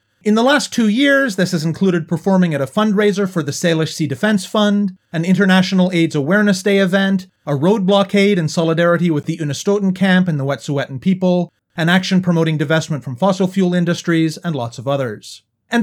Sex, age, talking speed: male, 30-49, 190 wpm